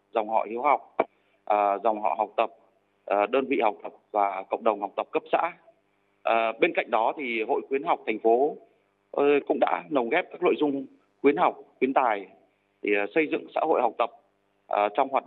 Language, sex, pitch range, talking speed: Vietnamese, male, 110-150 Hz, 190 wpm